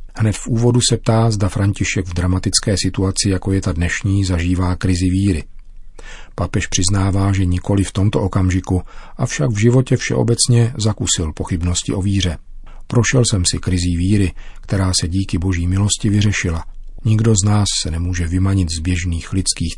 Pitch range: 90-110 Hz